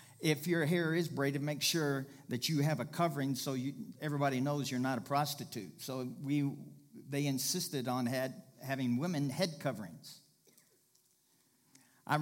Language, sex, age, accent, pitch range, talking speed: English, male, 50-69, American, 130-150 Hz, 150 wpm